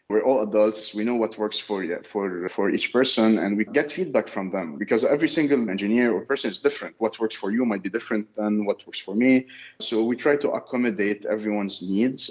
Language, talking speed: English, 230 wpm